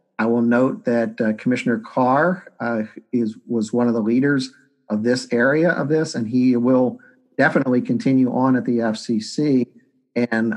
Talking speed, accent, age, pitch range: 165 wpm, American, 50-69, 120-140 Hz